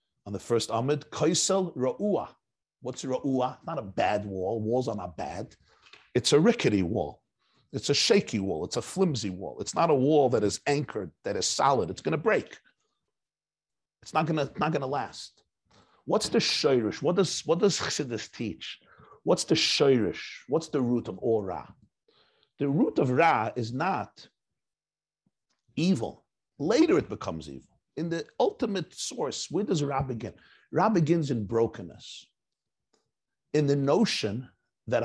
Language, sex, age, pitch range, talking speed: English, male, 50-69, 110-150 Hz, 165 wpm